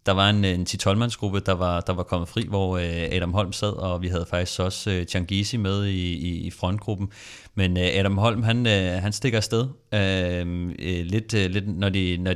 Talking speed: 190 wpm